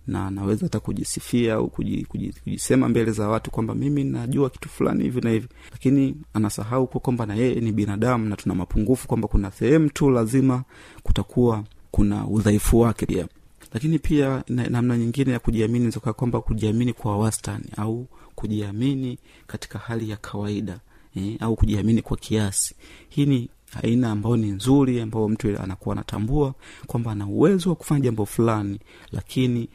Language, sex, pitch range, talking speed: Swahili, male, 105-125 Hz, 160 wpm